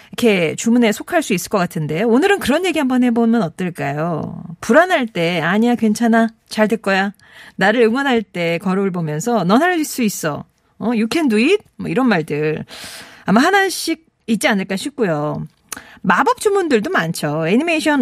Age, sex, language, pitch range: 40-59, female, Korean, 185-295 Hz